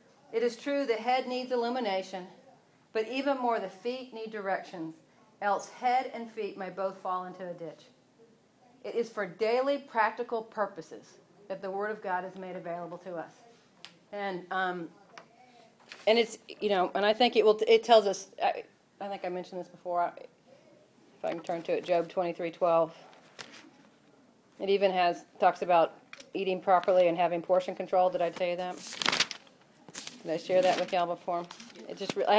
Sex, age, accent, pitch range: female, 40-59, American, 185-240 Hz